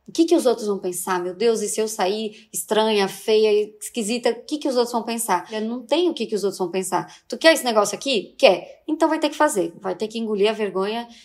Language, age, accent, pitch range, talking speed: Portuguese, 20-39, Brazilian, 210-265 Hz, 265 wpm